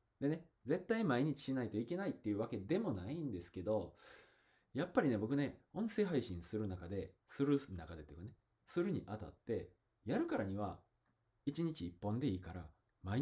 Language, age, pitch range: Japanese, 20-39, 90-140 Hz